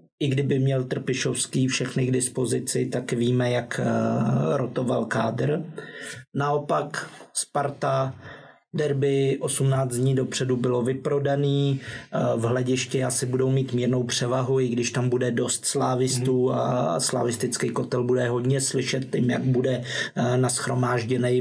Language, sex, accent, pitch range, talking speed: Czech, male, native, 125-140 Hz, 120 wpm